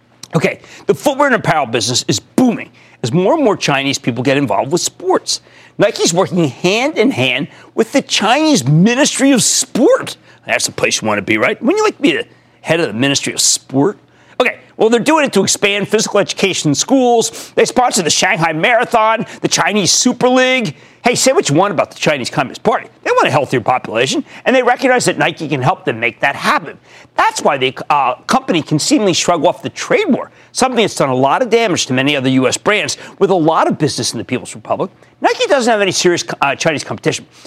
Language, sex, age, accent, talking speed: English, male, 40-59, American, 215 wpm